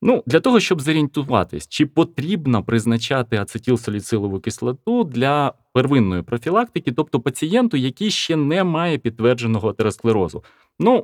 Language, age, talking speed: Ukrainian, 30-49, 120 wpm